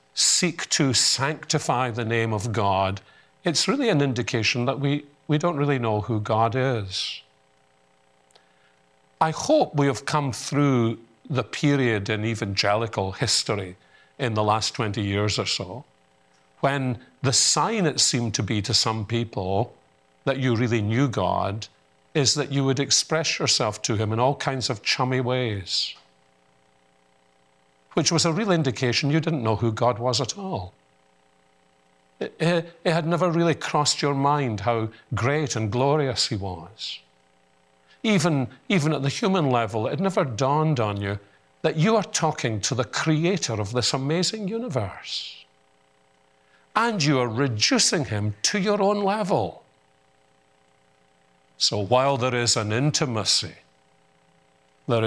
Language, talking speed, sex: English, 145 wpm, male